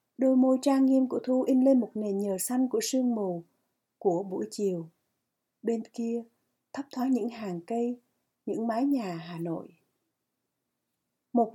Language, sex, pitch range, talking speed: Vietnamese, female, 200-260 Hz, 160 wpm